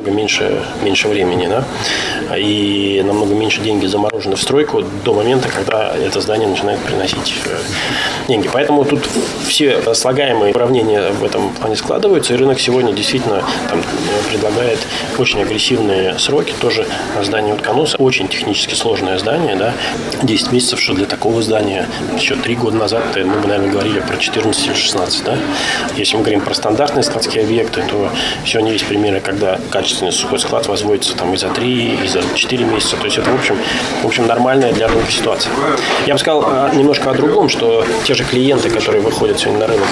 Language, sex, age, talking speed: Russian, male, 20-39, 170 wpm